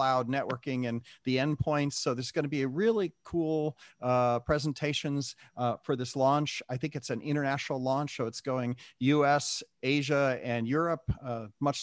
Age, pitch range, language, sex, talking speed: 40-59, 120-150 Hz, English, male, 170 wpm